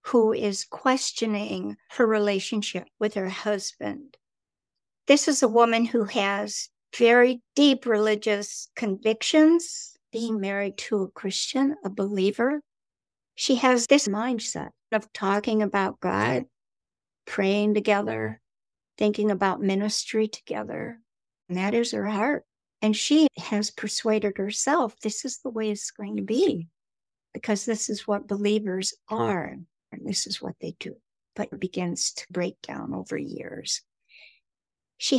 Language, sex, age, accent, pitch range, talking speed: English, female, 60-79, American, 205-250 Hz, 135 wpm